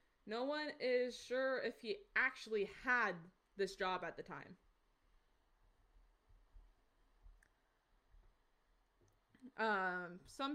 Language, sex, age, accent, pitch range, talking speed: English, female, 20-39, American, 195-250 Hz, 85 wpm